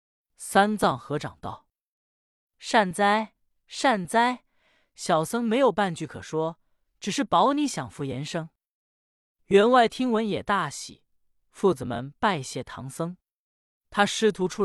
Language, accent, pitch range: Chinese, native, 140-205 Hz